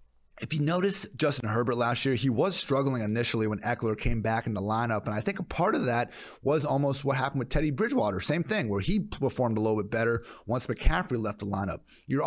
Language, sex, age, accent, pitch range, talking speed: English, male, 30-49, American, 105-135 Hz, 230 wpm